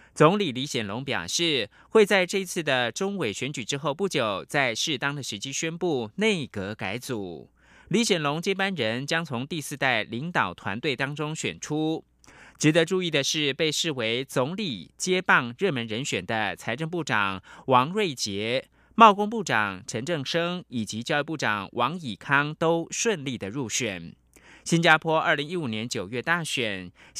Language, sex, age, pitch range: German, male, 30-49, 115-170 Hz